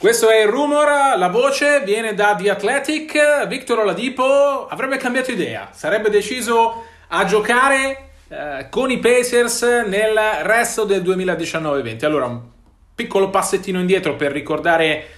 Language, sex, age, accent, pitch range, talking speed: Italian, male, 30-49, native, 150-225 Hz, 140 wpm